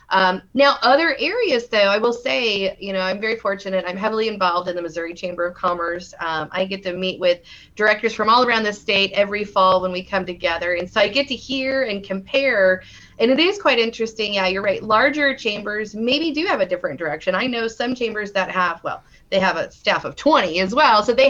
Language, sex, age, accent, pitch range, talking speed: English, female, 30-49, American, 185-230 Hz, 230 wpm